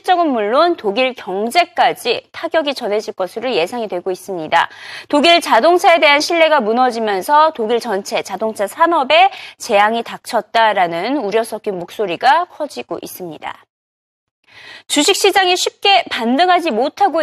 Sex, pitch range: female, 230-330 Hz